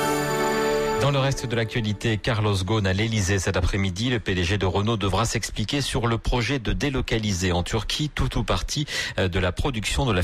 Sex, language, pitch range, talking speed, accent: male, French, 90-115 Hz, 190 wpm, French